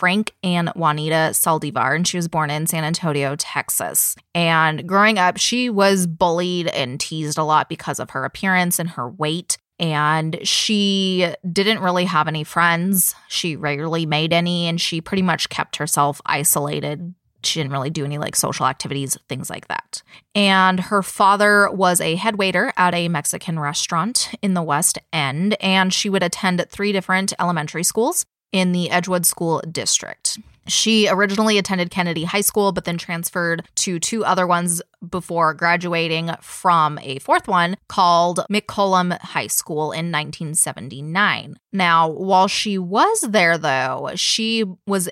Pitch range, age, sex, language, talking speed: 160-195 Hz, 20-39, female, English, 160 wpm